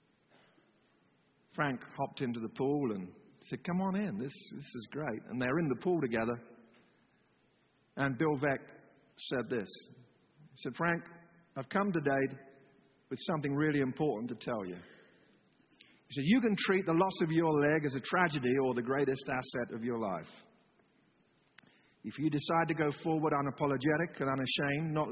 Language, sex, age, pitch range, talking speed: English, male, 50-69, 130-170 Hz, 165 wpm